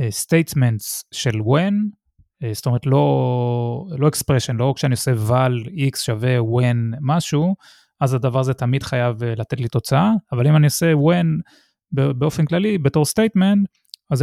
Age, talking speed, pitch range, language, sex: 20-39, 145 wpm, 125-170 Hz, Hebrew, male